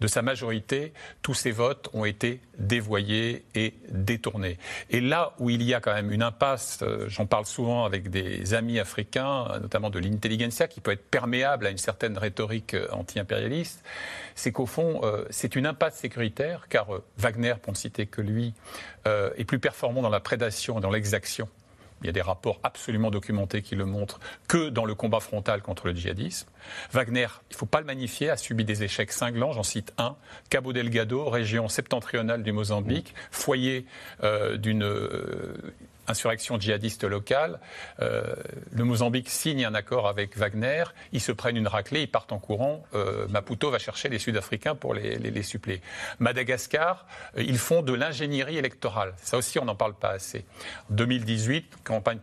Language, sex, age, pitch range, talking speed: French, male, 50-69, 105-130 Hz, 175 wpm